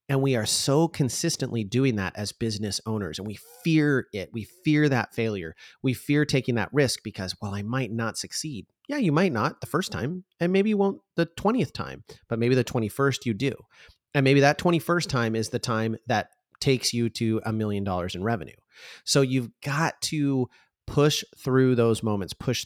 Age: 30-49